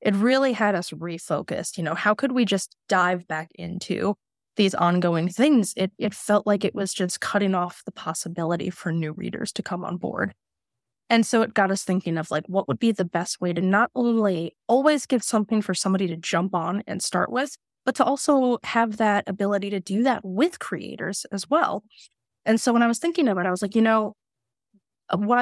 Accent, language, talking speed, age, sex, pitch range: American, English, 210 wpm, 20-39, female, 180-225 Hz